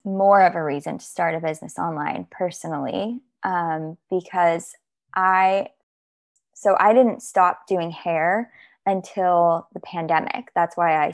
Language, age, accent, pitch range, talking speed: English, 20-39, American, 155-180 Hz, 135 wpm